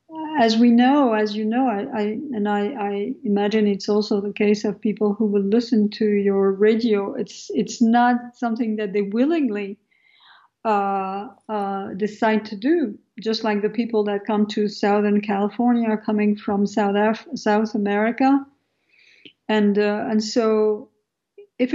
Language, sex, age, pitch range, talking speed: English, female, 50-69, 210-240 Hz, 155 wpm